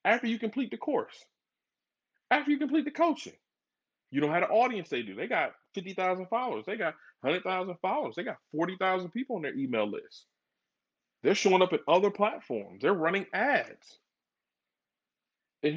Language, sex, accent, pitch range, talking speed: English, male, American, 115-190 Hz, 165 wpm